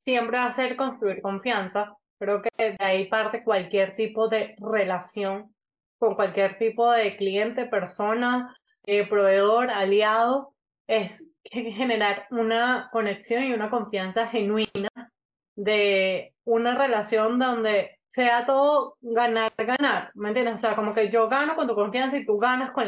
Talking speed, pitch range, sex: 145 wpm, 210-260 Hz, female